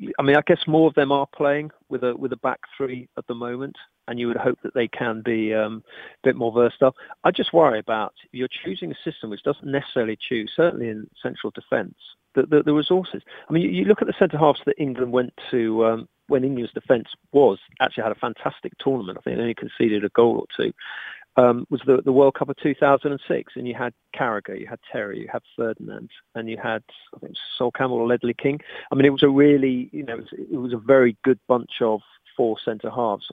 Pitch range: 115-150 Hz